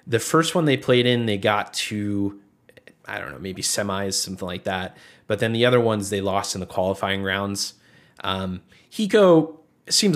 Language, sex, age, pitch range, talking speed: English, male, 20-39, 100-125 Hz, 185 wpm